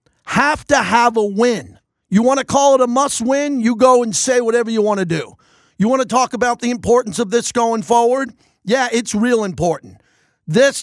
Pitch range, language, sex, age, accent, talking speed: 185-260 Hz, English, male, 50-69, American, 210 wpm